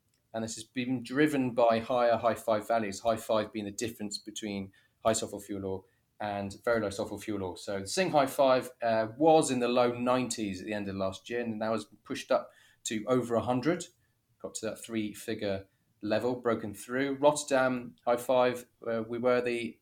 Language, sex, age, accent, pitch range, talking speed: English, male, 30-49, British, 105-125 Hz, 205 wpm